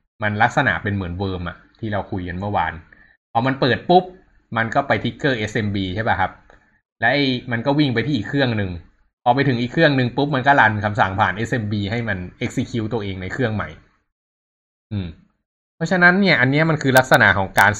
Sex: male